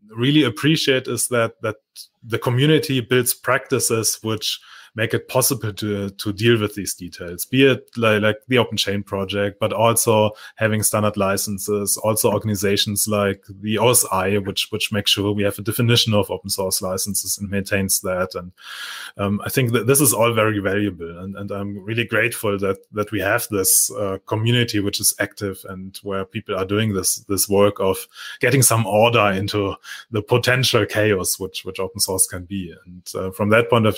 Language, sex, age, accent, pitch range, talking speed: English, male, 30-49, German, 100-115 Hz, 185 wpm